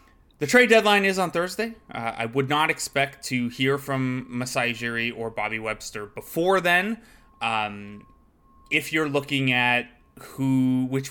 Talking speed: 150 wpm